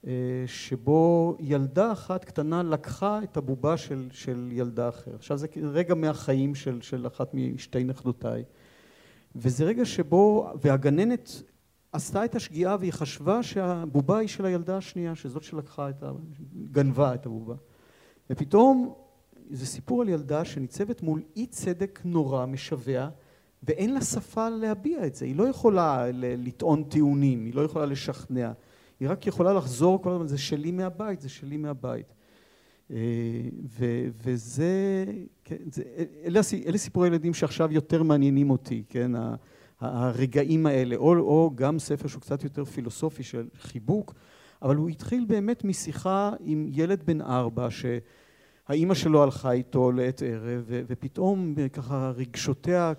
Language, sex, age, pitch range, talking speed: Hebrew, male, 50-69, 130-180 Hz, 140 wpm